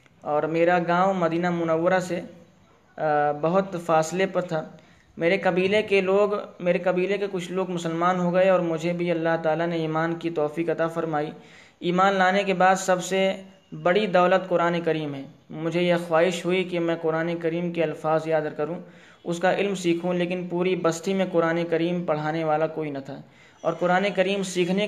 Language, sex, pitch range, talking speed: Urdu, male, 165-185 Hz, 180 wpm